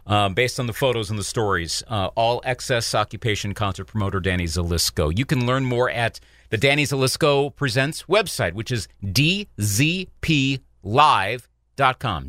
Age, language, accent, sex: 40-59, English, American, male